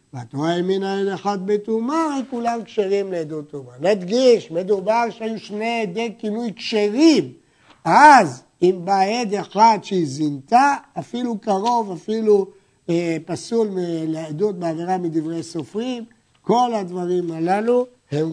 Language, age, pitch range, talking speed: Hebrew, 60-79, 160-225 Hz, 130 wpm